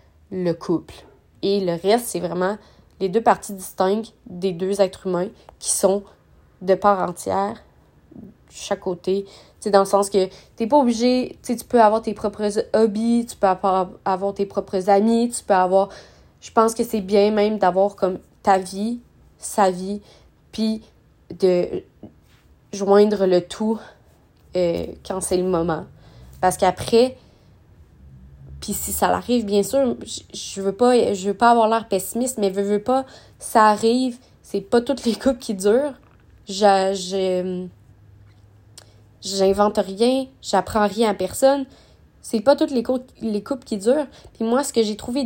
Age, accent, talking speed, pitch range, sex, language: 20-39, Canadian, 160 wpm, 190-230 Hz, female, French